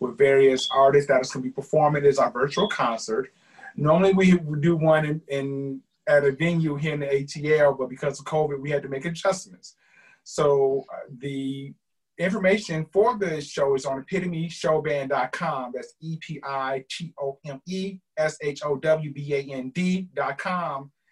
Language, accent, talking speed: English, American, 135 wpm